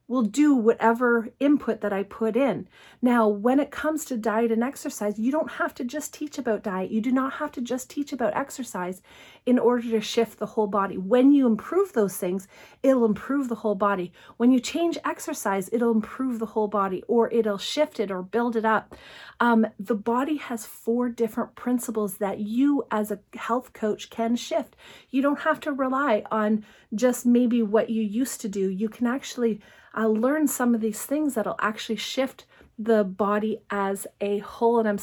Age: 40-59